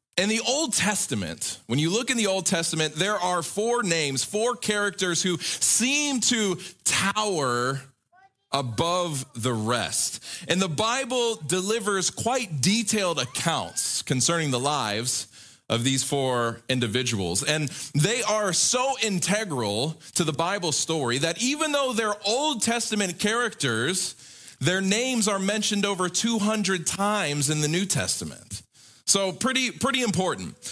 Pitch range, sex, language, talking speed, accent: 130-205 Hz, male, English, 135 wpm, American